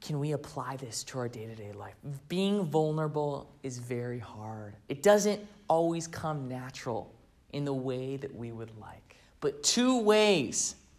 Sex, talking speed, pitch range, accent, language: male, 155 wpm, 125-180 Hz, American, English